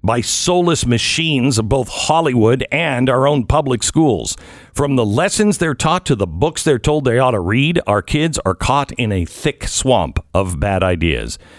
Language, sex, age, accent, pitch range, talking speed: English, male, 50-69, American, 100-145 Hz, 185 wpm